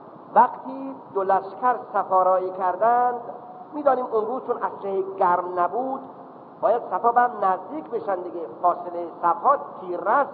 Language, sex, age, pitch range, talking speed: Persian, male, 50-69, 185-245 Hz, 115 wpm